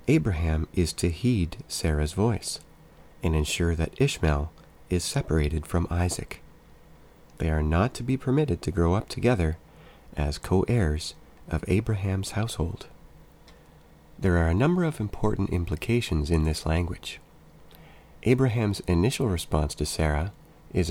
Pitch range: 80-110 Hz